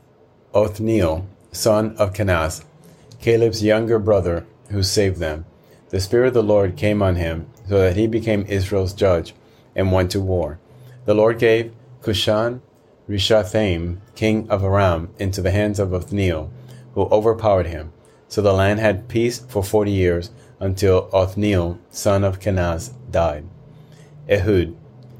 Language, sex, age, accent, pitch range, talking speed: English, male, 30-49, American, 95-110 Hz, 140 wpm